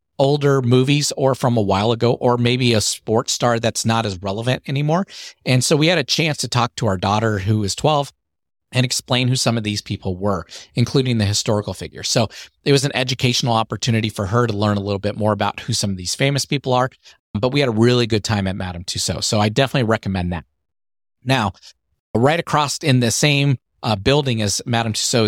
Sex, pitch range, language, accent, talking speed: male, 105-130 Hz, English, American, 215 wpm